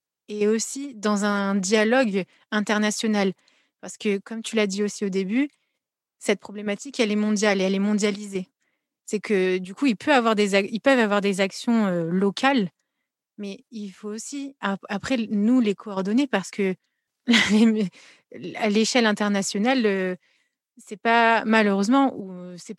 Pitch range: 195-240 Hz